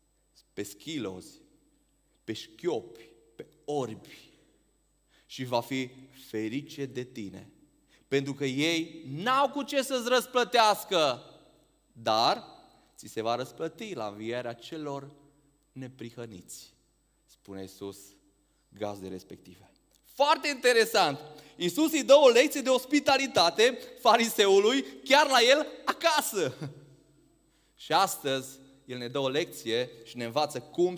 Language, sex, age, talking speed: Romanian, male, 30-49, 110 wpm